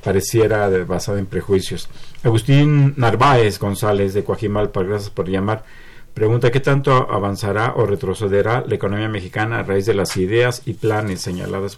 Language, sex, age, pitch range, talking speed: Spanish, male, 50-69, 100-125 Hz, 150 wpm